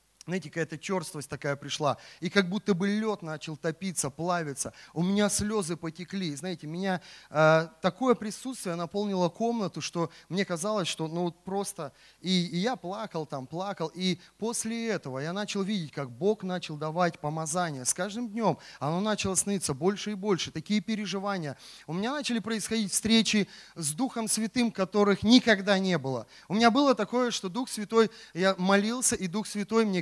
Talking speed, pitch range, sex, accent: 170 wpm, 165-215 Hz, male, native